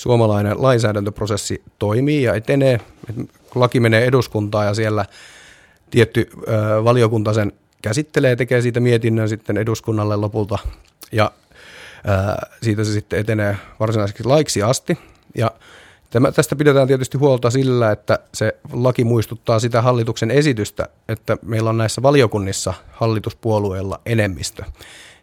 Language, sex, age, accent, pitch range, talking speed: Finnish, male, 30-49, native, 105-125 Hz, 110 wpm